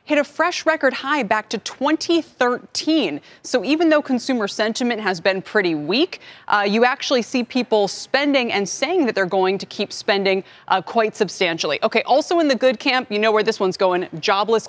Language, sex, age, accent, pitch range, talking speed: English, female, 20-39, American, 205-285 Hz, 190 wpm